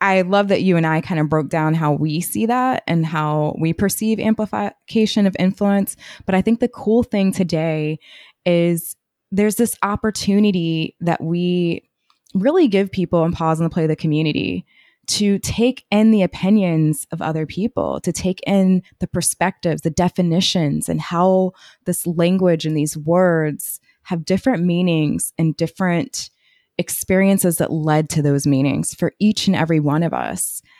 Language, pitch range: English, 155-200 Hz